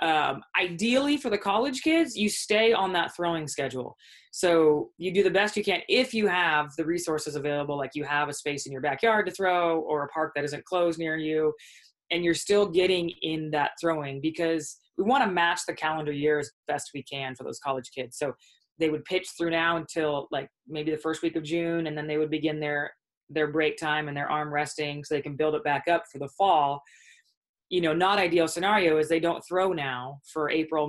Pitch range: 150-180 Hz